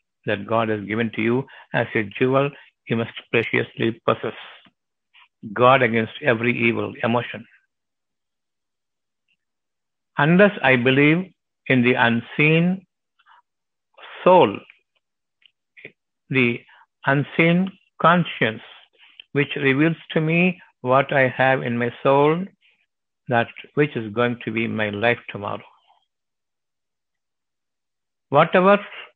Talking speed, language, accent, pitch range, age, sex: 100 wpm, Tamil, native, 115-155 Hz, 60-79, male